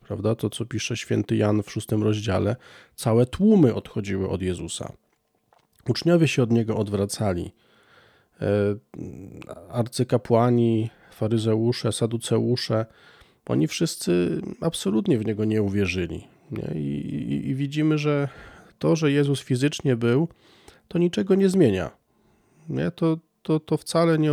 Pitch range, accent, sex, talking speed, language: 110-145 Hz, native, male, 115 wpm, Polish